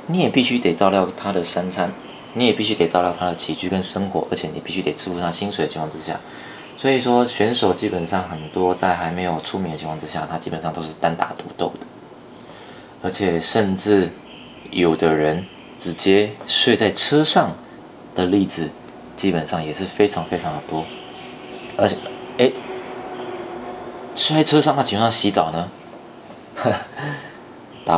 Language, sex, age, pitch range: Chinese, male, 20-39, 80-100 Hz